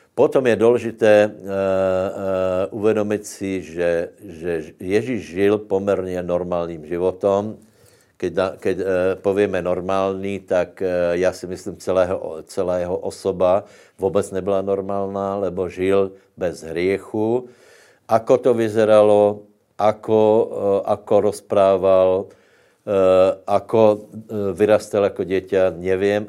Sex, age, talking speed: male, 60-79, 105 wpm